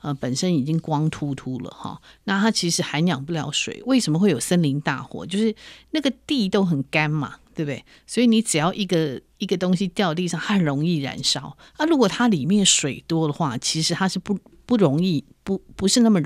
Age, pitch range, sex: 50-69, 150-195 Hz, female